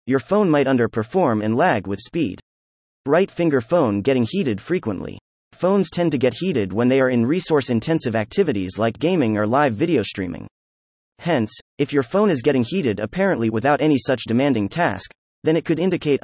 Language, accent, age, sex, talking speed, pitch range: English, American, 30-49, male, 175 wpm, 110-160 Hz